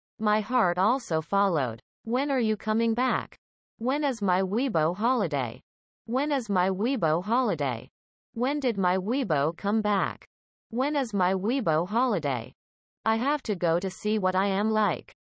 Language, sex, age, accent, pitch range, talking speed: English, female, 30-49, American, 170-235 Hz, 155 wpm